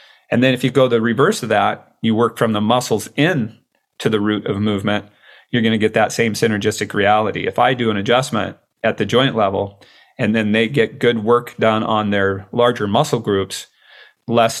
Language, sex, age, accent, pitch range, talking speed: English, male, 40-59, American, 105-125 Hz, 205 wpm